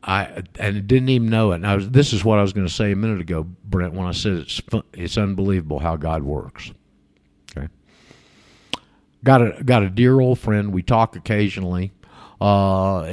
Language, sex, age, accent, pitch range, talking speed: English, male, 50-69, American, 95-125 Hz, 190 wpm